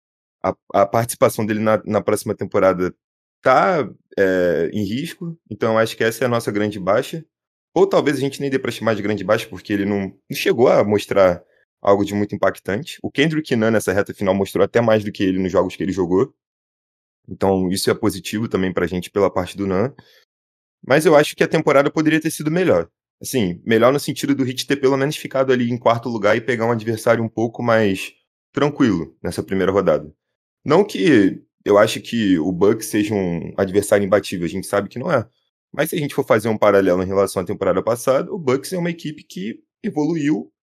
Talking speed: 215 wpm